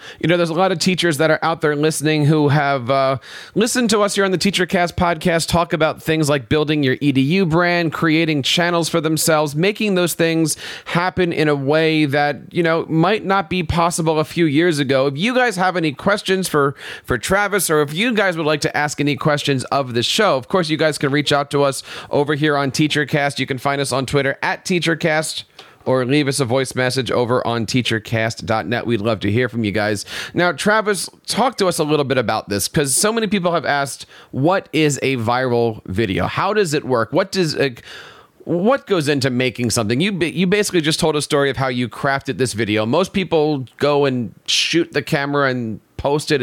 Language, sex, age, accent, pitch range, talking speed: English, male, 40-59, American, 130-170 Hz, 215 wpm